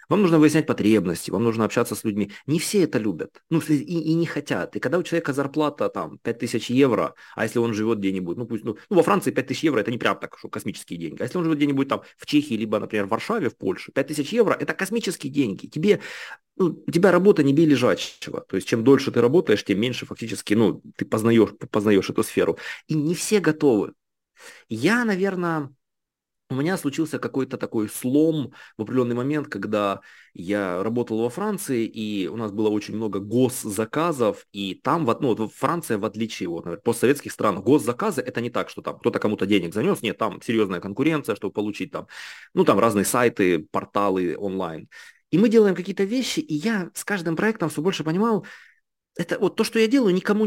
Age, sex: 30-49, male